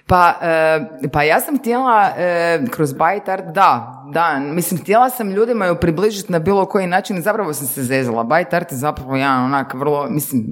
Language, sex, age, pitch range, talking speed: Croatian, female, 30-49, 145-200 Hz, 190 wpm